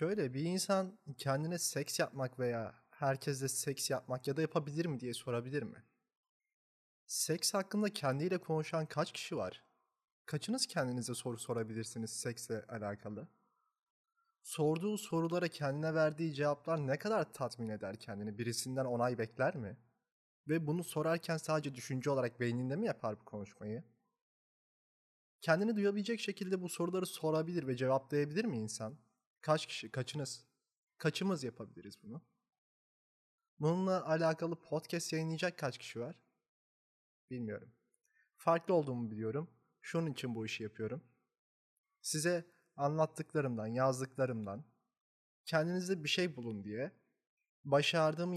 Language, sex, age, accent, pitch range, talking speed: Turkish, male, 30-49, native, 120-170 Hz, 120 wpm